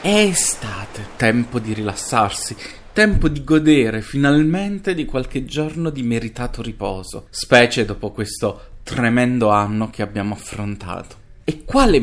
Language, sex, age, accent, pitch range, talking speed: Italian, male, 30-49, native, 110-130 Hz, 125 wpm